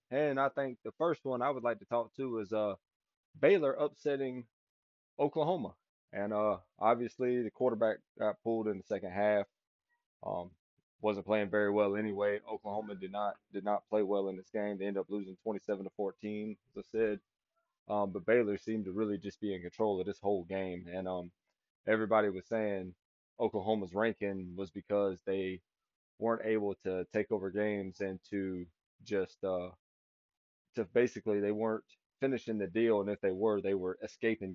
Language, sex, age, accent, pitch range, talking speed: English, male, 20-39, American, 95-115 Hz, 180 wpm